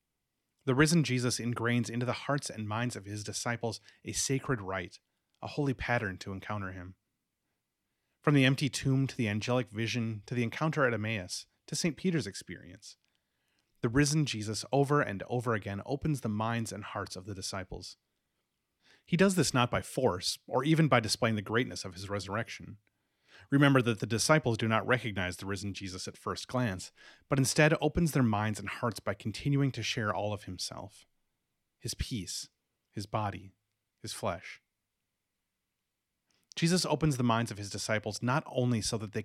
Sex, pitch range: male, 105-130 Hz